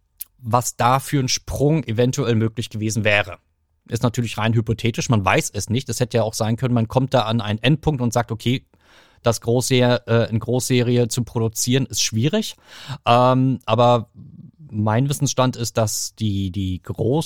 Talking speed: 165 wpm